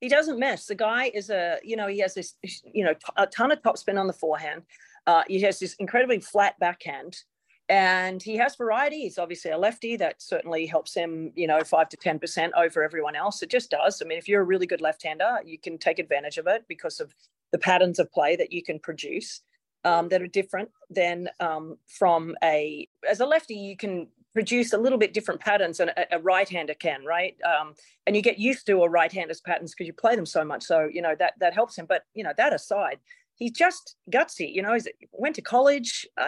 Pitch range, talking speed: 170-235 Hz, 230 wpm